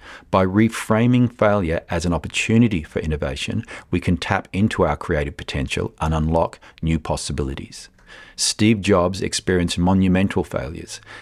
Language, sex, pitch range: English, male, 80-100 Hz